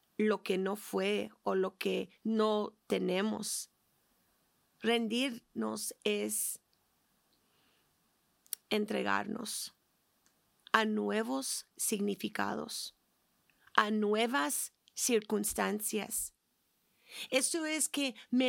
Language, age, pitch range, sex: Spanish, 30-49, 215-265 Hz, female